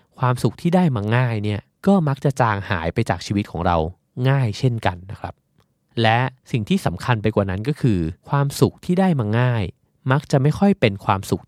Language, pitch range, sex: Thai, 105-145 Hz, male